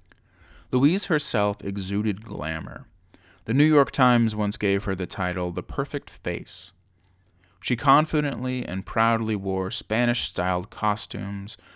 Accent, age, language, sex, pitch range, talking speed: American, 30-49, English, male, 90-120 Hz, 115 wpm